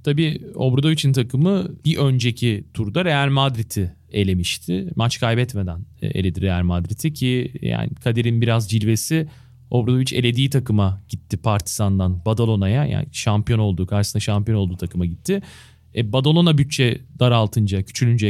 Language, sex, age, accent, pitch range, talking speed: Turkish, male, 40-59, native, 105-140 Hz, 125 wpm